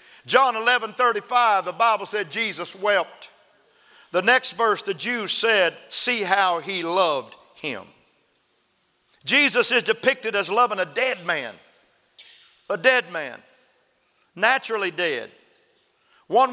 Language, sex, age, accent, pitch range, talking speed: English, male, 50-69, American, 150-240 Hz, 125 wpm